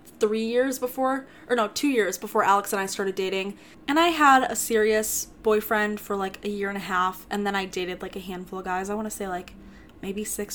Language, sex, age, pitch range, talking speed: English, female, 10-29, 190-245 Hz, 235 wpm